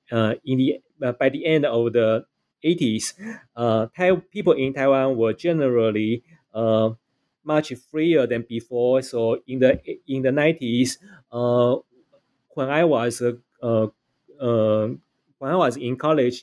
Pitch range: 120-155 Hz